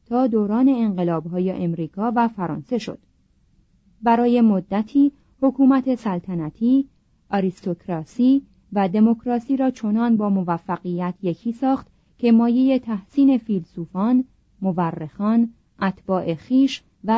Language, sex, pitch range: Persian, female, 180-240 Hz